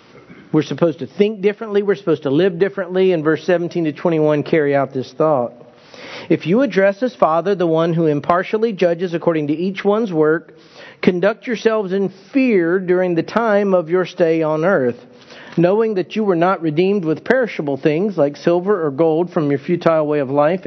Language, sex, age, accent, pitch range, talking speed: English, male, 50-69, American, 155-195 Hz, 190 wpm